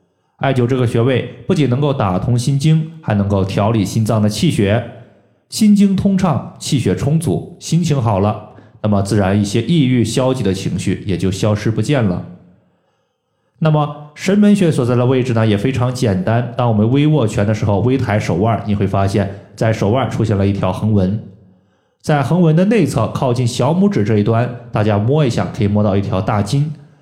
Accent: native